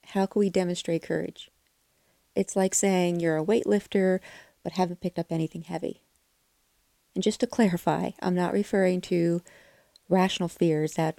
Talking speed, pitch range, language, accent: 150 wpm, 165-190 Hz, English, American